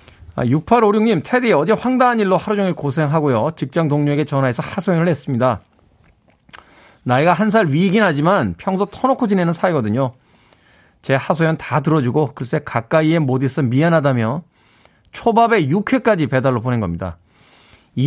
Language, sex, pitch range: Korean, male, 125-190 Hz